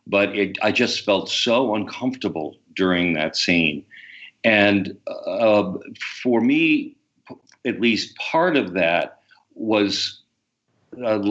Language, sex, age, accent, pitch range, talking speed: English, male, 50-69, American, 95-120 Hz, 105 wpm